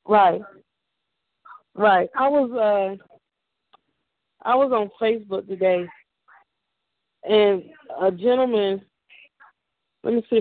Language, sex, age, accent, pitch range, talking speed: English, female, 20-39, American, 190-230 Hz, 90 wpm